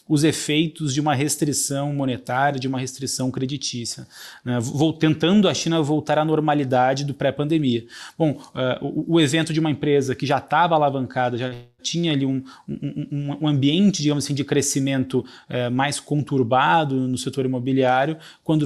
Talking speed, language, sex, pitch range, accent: 160 wpm, Portuguese, male, 130-155 Hz, Brazilian